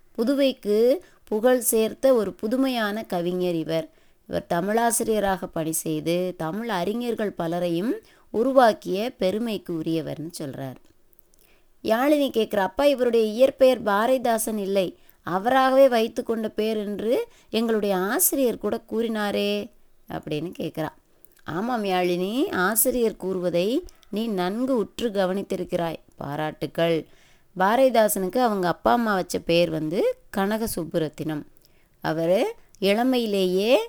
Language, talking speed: Tamil, 100 wpm